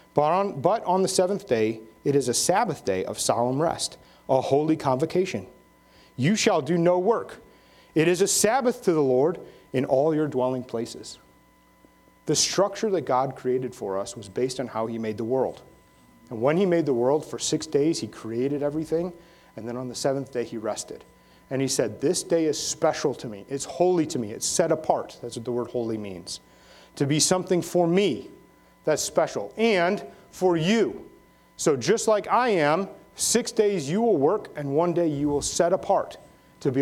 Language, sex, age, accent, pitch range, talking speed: English, male, 30-49, American, 120-185 Hz, 195 wpm